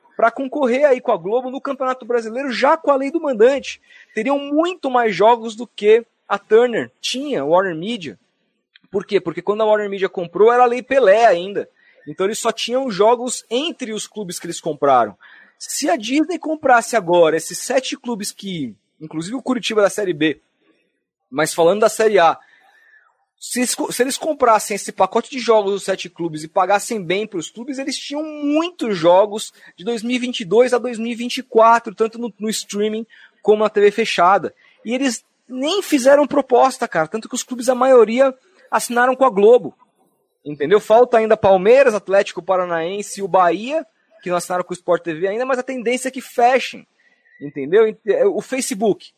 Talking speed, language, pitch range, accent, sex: 180 wpm, Portuguese, 205-265 Hz, Brazilian, male